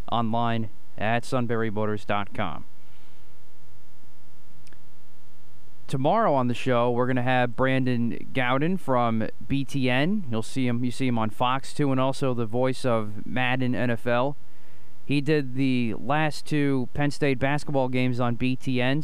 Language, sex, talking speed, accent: English, male, 125 wpm, American